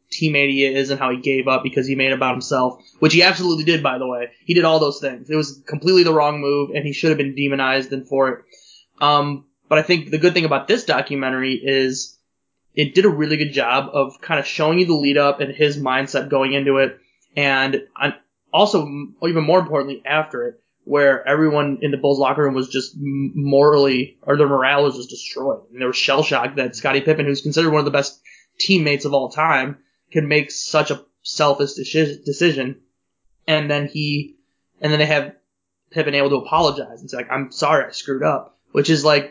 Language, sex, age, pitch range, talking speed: English, male, 20-39, 135-155 Hz, 210 wpm